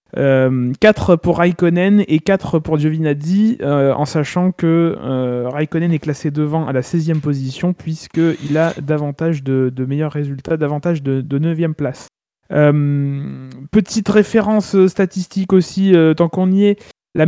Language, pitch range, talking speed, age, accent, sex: French, 150-185 Hz, 155 wpm, 20-39, French, male